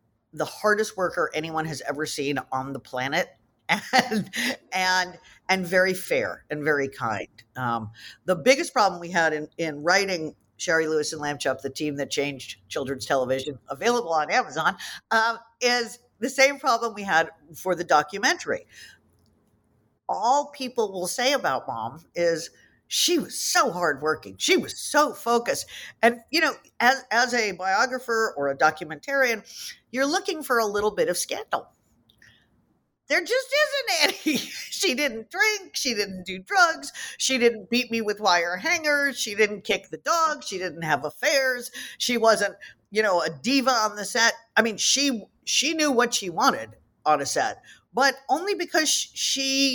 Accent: American